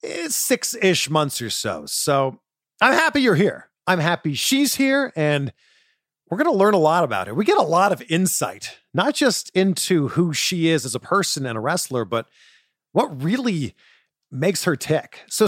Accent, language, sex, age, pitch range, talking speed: American, English, male, 40-59, 140-230 Hz, 185 wpm